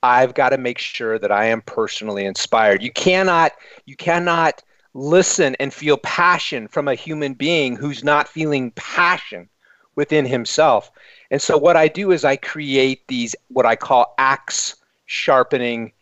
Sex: male